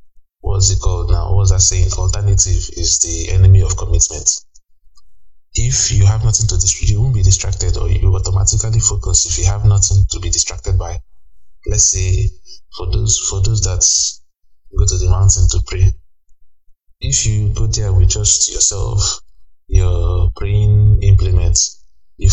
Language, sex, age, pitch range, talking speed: English, male, 20-39, 85-100 Hz, 165 wpm